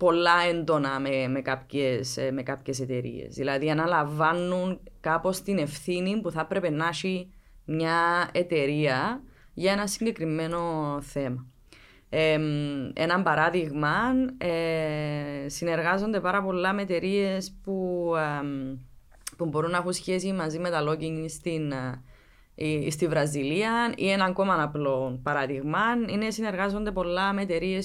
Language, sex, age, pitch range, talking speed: Greek, female, 20-39, 150-190 Hz, 125 wpm